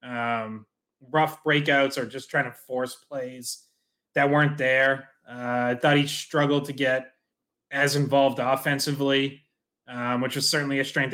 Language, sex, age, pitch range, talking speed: English, male, 20-39, 125-150 Hz, 145 wpm